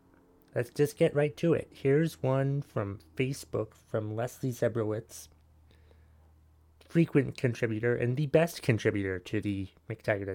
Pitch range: 105-140 Hz